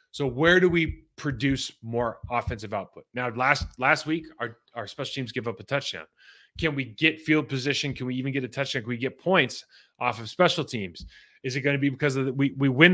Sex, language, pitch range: male, English, 125-165 Hz